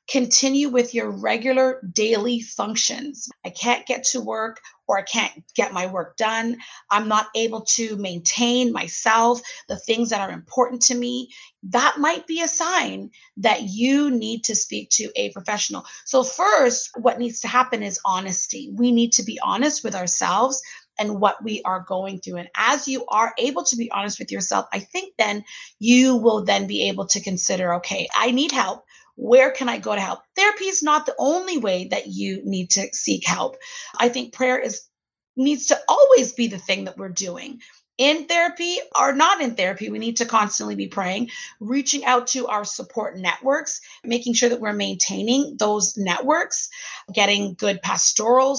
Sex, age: female, 30-49